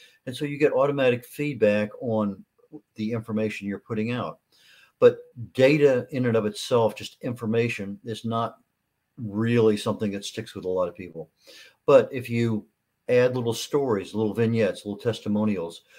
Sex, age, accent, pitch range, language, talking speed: male, 50-69, American, 105-120 Hz, English, 155 wpm